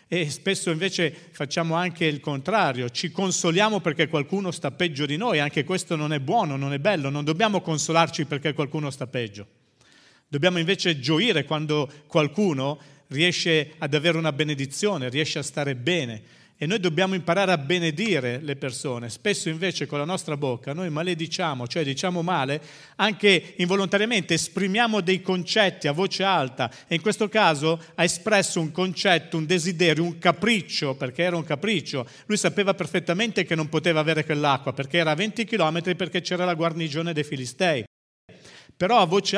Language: Italian